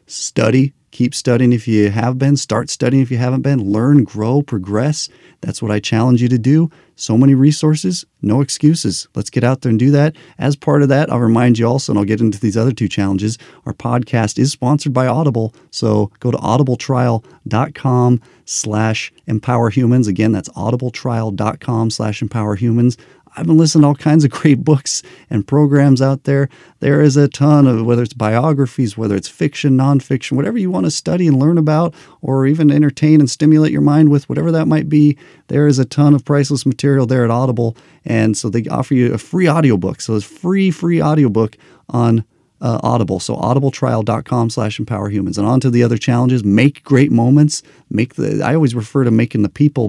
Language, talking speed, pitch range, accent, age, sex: English, 190 wpm, 115-145 Hz, American, 40-59, male